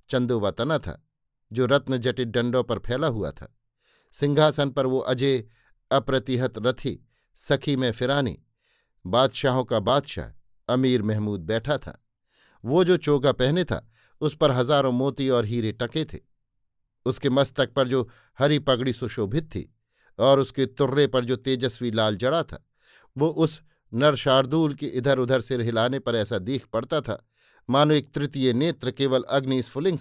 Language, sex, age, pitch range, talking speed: Hindi, male, 50-69, 120-140 Hz, 150 wpm